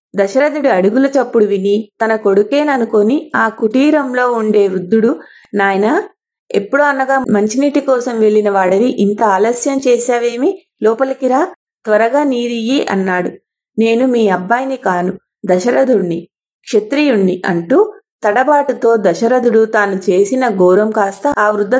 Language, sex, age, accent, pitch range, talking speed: English, female, 30-49, Indian, 205-260 Hz, 110 wpm